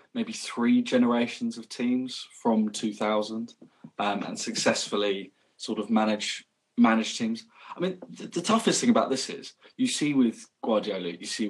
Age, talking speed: 20-39, 155 wpm